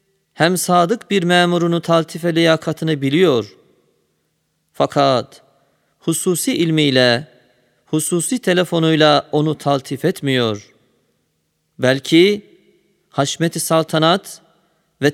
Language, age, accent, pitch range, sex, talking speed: Turkish, 40-59, native, 135-170 Hz, male, 75 wpm